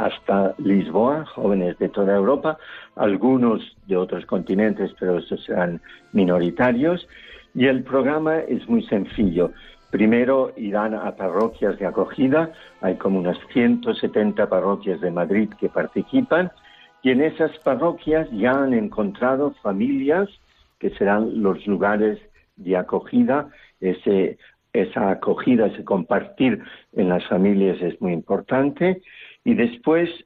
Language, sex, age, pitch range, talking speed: Spanish, male, 60-79, 100-155 Hz, 125 wpm